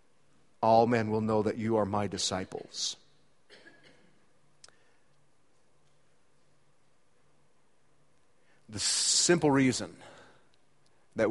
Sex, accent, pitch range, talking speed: male, American, 120-160 Hz, 70 wpm